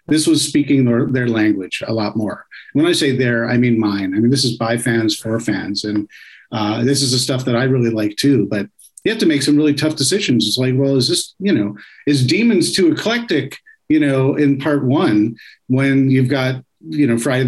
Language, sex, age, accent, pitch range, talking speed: English, male, 50-69, American, 120-140 Hz, 225 wpm